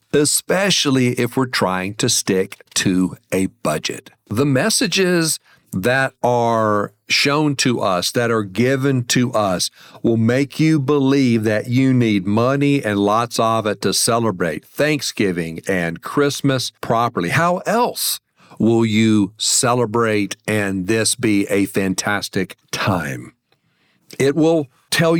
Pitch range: 105-140 Hz